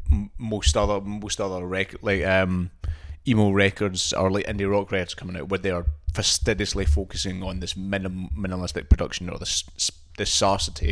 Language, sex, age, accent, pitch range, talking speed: English, male, 20-39, British, 85-105 Hz, 165 wpm